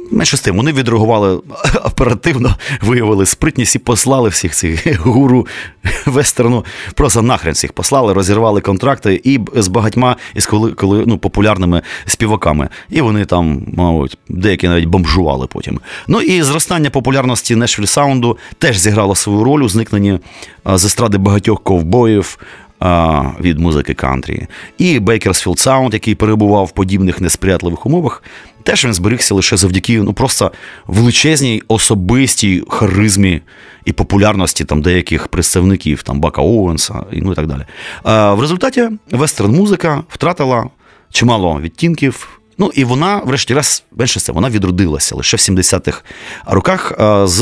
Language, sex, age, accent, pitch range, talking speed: Ukrainian, male, 30-49, native, 90-120 Hz, 140 wpm